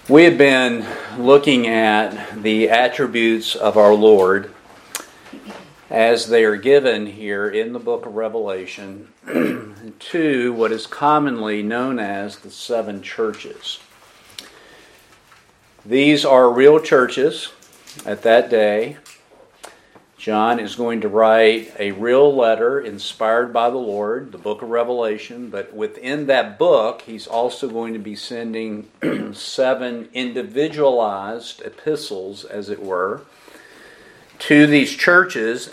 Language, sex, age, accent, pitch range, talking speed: English, male, 50-69, American, 110-145 Hz, 120 wpm